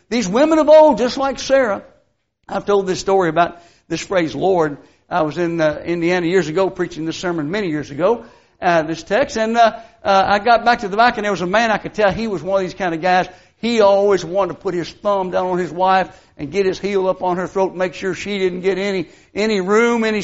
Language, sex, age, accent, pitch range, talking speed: English, male, 60-79, American, 190-270 Hz, 250 wpm